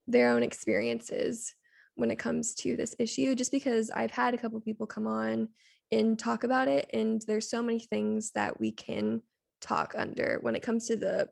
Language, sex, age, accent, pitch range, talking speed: English, female, 10-29, American, 210-230 Hz, 195 wpm